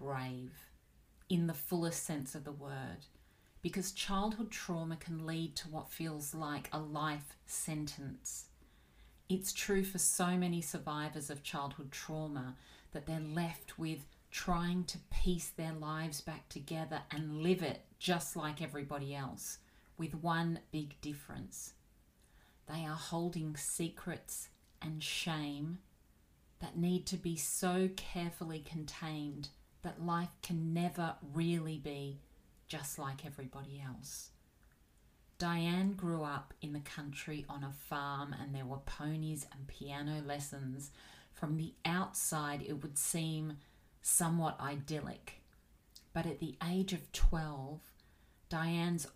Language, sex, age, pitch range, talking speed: English, female, 40-59, 140-170 Hz, 130 wpm